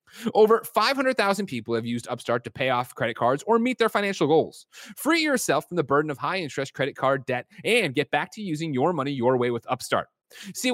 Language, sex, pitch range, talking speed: English, male, 135-200 Hz, 220 wpm